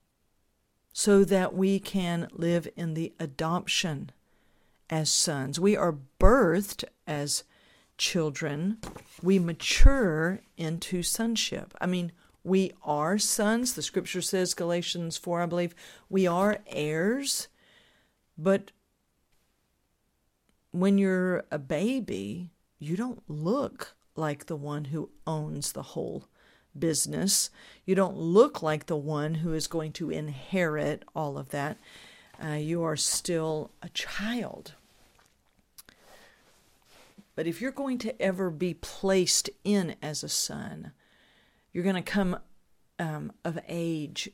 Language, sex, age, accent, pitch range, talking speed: English, female, 50-69, American, 155-190 Hz, 120 wpm